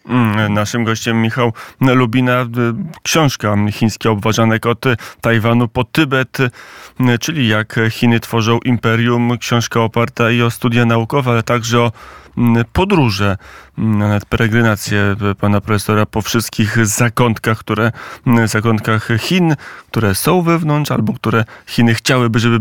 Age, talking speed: 30-49, 115 wpm